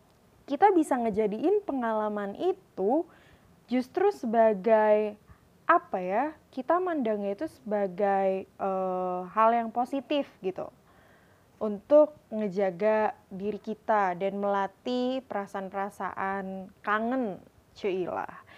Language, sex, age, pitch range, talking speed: Indonesian, female, 20-39, 190-235 Hz, 85 wpm